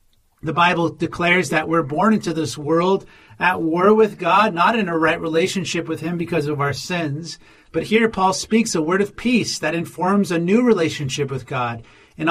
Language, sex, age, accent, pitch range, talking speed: English, male, 40-59, American, 155-190 Hz, 195 wpm